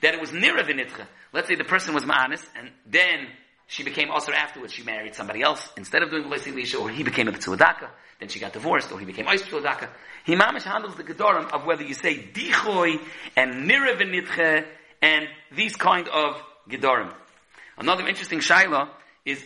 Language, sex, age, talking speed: English, male, 40-59, 175 wpm